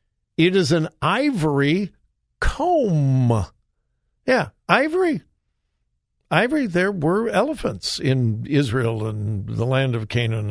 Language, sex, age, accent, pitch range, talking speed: English, male, 60-79, American, 135-205 Hz, 105 wpm